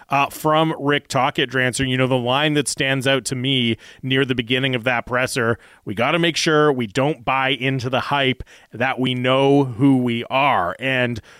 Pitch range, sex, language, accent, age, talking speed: 125-155 Hz, male, English, American, 30-49, 200 wpm